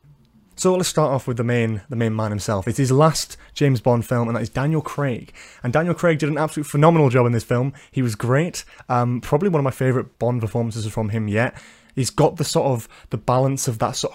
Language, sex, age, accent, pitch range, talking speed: English, male, 20-39, British, 110-130 Hz, 240 wpm